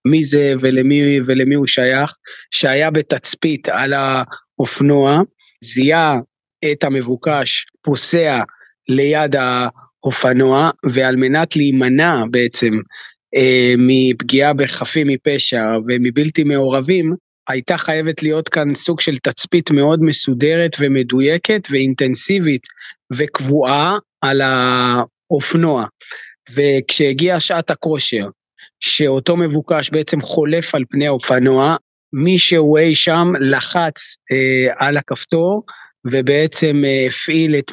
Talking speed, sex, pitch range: 100 wpm, male, 135-165 Hz